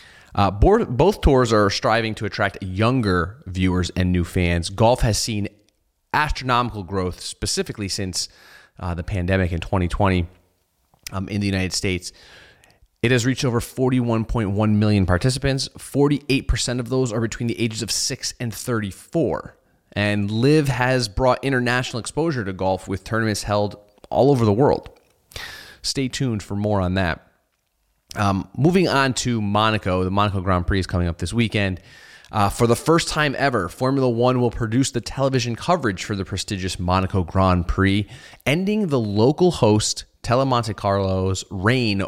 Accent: American